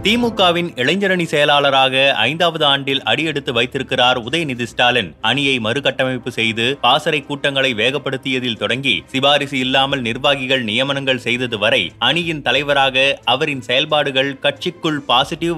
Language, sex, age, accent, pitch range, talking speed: Tamil, male, 30-49, native, 130-155 Hz, 110 wpm